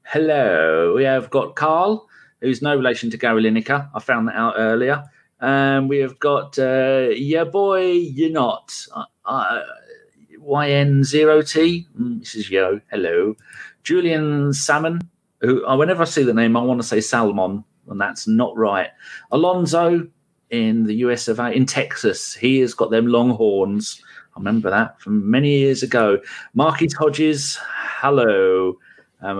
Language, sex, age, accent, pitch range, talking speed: English, male, 40-59, British, 110-160 Hz, 155 wpm